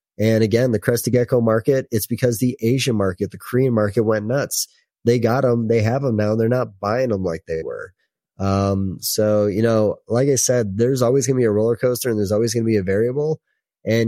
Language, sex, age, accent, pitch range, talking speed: English, male, 30-49, American, 105-125 Hz, 235 wpm